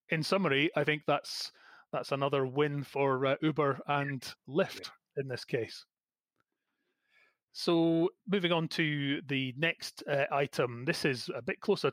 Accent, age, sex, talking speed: British, 30-49, male, 145 wpm